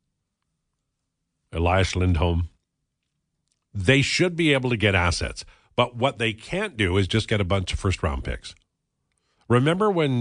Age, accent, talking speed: 50-69, American, 140 wpm